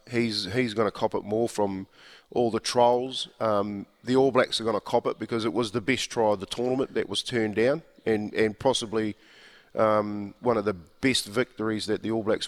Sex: male